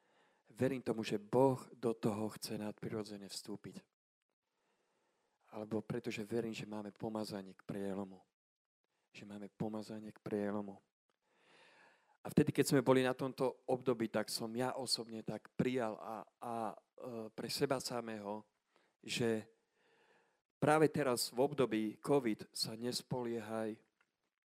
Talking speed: 120 wpm